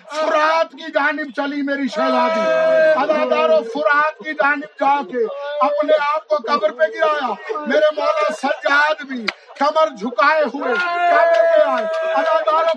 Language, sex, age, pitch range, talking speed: Urdu, male, 50-69, 275-315 Hz, 85 wpm